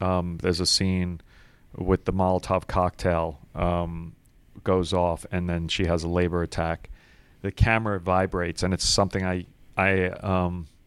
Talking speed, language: 150 wpm, English